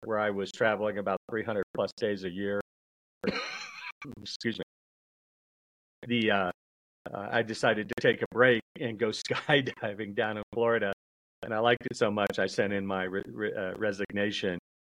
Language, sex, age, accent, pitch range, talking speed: English, male, 40-59, American, 85-105 Hz, 155 wpm